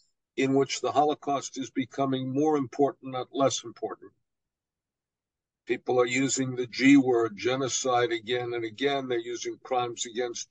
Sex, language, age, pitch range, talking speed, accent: male, English, 60-79, 120-135 Hz, 145 wpm, American